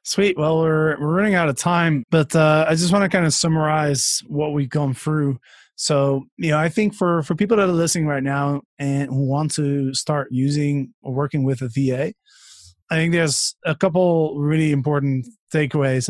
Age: 20-39